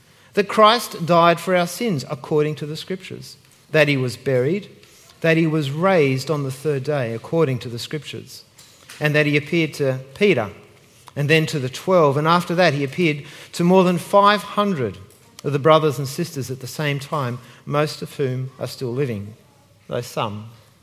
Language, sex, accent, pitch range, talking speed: English, male, Australian, 140-195 Hz, 180 wpm